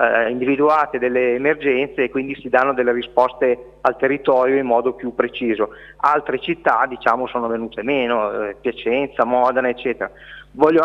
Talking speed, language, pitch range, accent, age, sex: 140 wpm, Italian, 130-155 Hz, native, 30-49, male